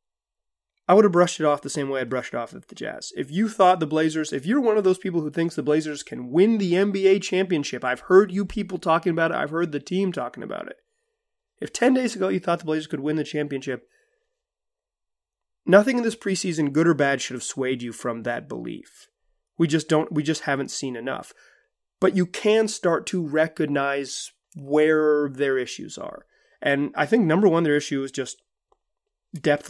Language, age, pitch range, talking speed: English, 30-49, 140-190 Hz, 205 wpm